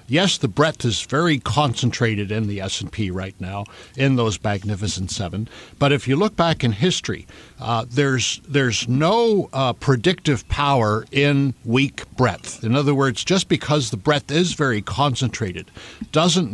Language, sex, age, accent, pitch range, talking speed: English, male, 60-79, American, 105-145 Hz, 155 wpm